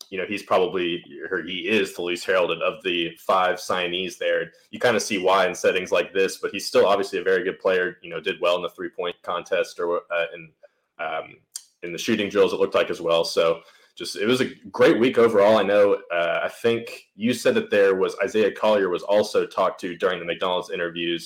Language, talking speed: English, 230 wpm